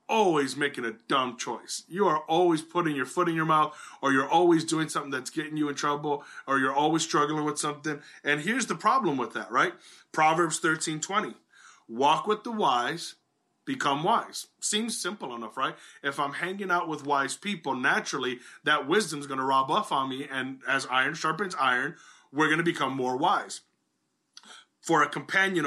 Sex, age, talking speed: male, 30-49, 180 wpm